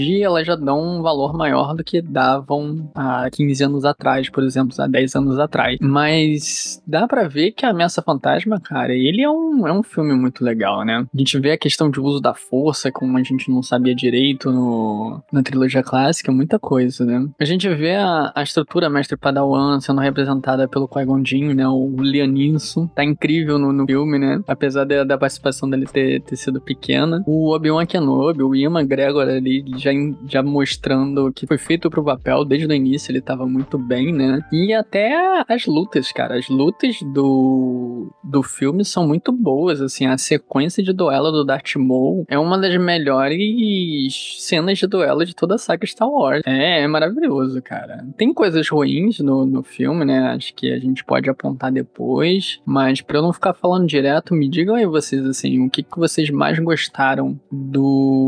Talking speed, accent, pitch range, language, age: 185 wpm, Brazilian, 130-160 Hz, Portuguese, 10-29